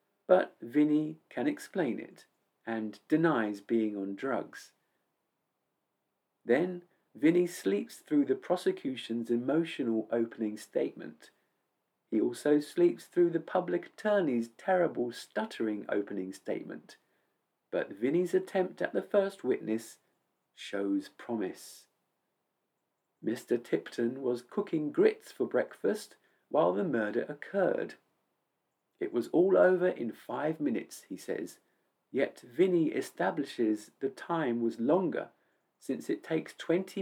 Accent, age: British, 50-69